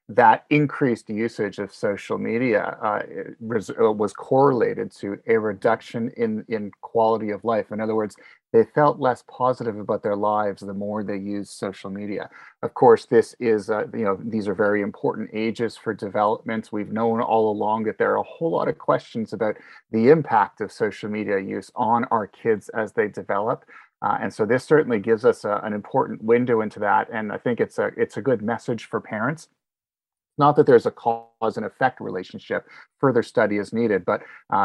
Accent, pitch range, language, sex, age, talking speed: American, 105-120 Hz, English, male, 30-49, 190 wpm